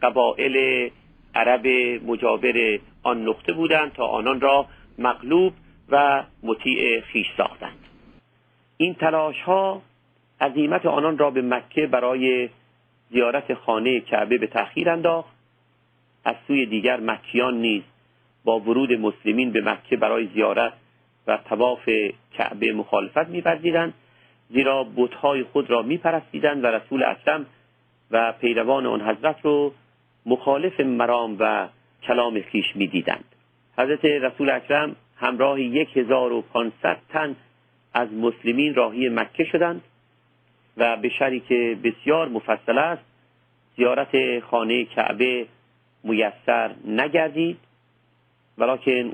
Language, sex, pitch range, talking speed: Persian, male, 120-145 Hz, 105 wpm